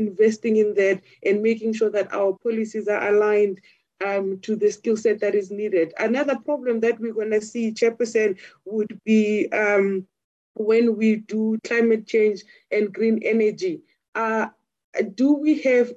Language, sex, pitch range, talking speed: English, female, 215-245 Hz, 160 wpm